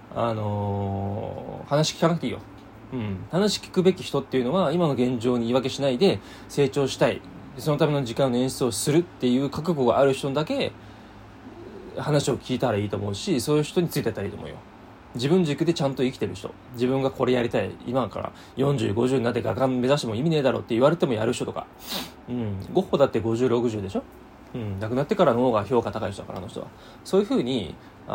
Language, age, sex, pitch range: Japanese, 20-39, male, 110-145 Hz